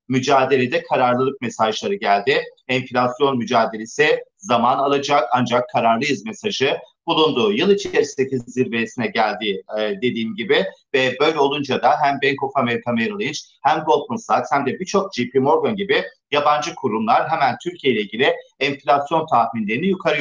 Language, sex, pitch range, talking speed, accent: Turkish, male, 130-200 Hz, 140 wpm, native